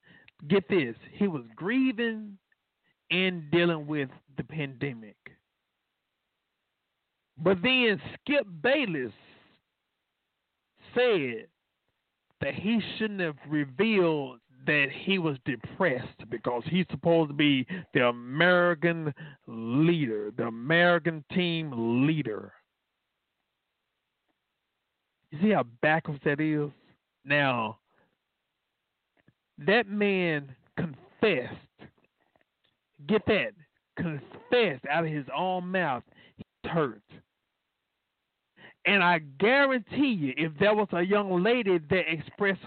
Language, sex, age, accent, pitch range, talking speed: English, male, 50-69, American, 150-200 Hz, 95 wpm